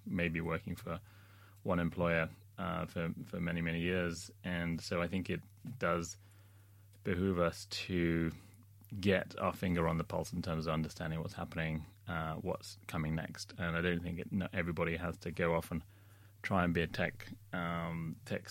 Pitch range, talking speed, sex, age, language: 85-100 Hz, 175 wpm, male, 20-39, English